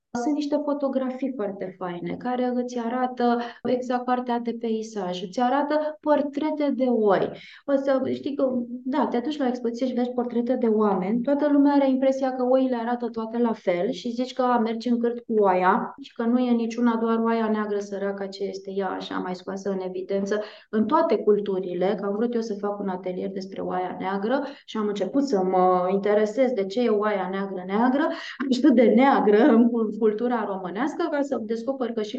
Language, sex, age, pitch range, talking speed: Romanian, female, 20-39, 195-255 Hz, 195 wpm